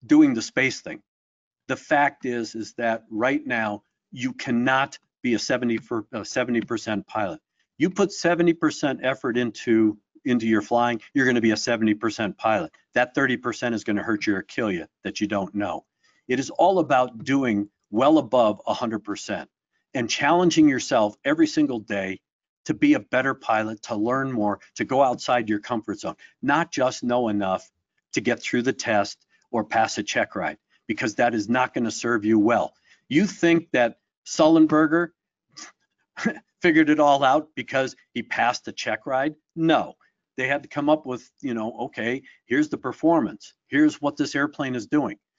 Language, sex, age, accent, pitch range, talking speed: English, male, 50-69, American, 115-170 Hz, 170 wpm